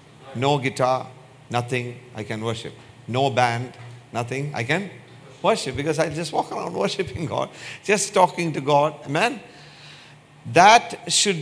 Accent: Indian